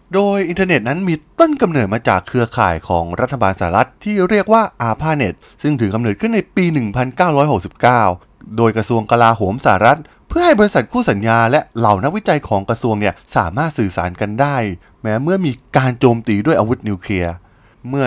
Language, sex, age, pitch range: Thai, male, 20-39, 105-160 Hz